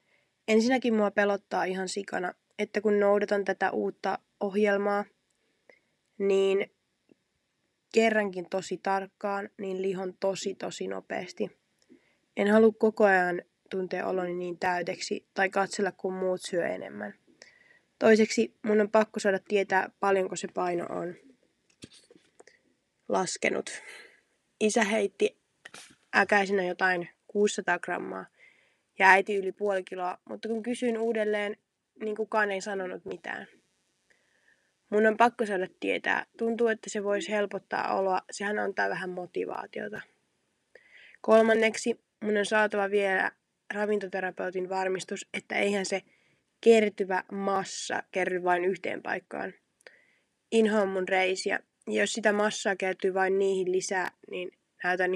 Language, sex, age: Finnish, female, 20-39